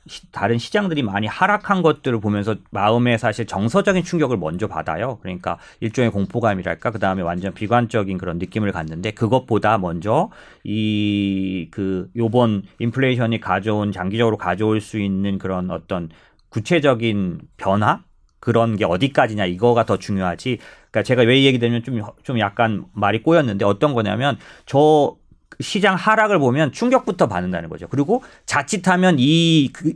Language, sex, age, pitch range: Korean, male, 40-59, 100-150 Hz